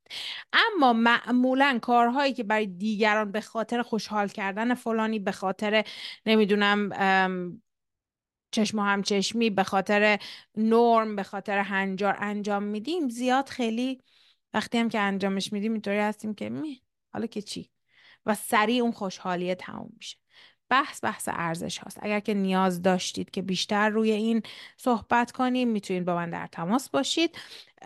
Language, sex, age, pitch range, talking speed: Persian, female, 30-49, 185-235 Hz, 140 wpm